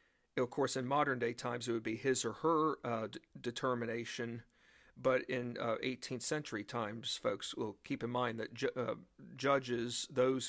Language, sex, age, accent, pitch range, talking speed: English, male, 40-59, American, 125-145 Hz, 170 wpm